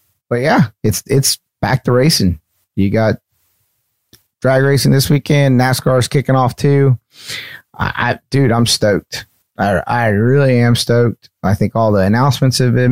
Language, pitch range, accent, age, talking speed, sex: English, 95-125 Hz, American, 30-49, 165 wpm, male